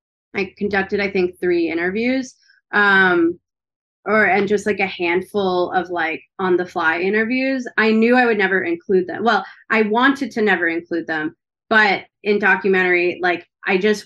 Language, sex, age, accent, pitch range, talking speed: English, female, 20-39, American, 175-225 Hz, 165 wpm